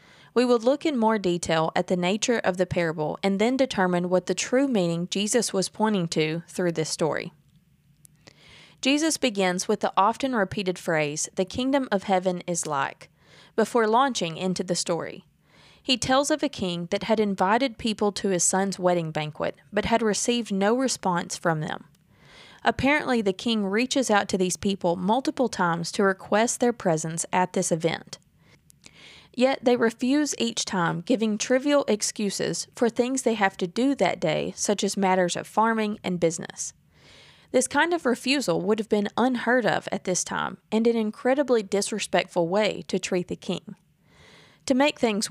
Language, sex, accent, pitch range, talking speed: English, female, American, 175-235 Hz, 170 wpm